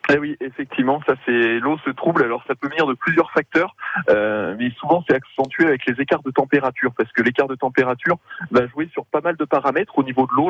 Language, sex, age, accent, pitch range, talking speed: French, male, 20-39, French, 125-165 Hz, 235 wpm